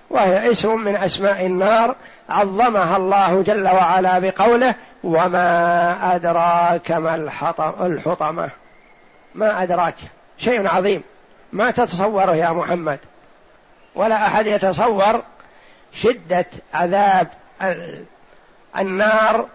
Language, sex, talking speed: Arabic, male, 85 wpm